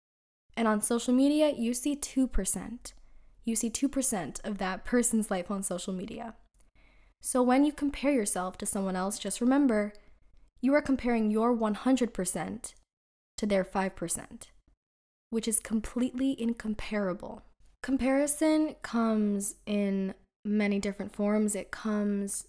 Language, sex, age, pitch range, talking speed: English, female, 10-29, 200-240 Hz, 125 wpm